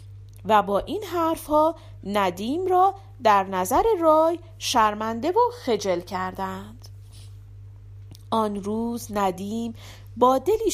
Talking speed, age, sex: 100 wpm, 40-59, female